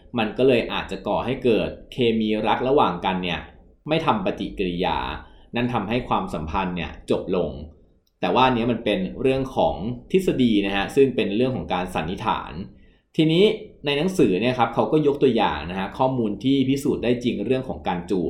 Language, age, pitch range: Thai, 20-39, 95-130 Hz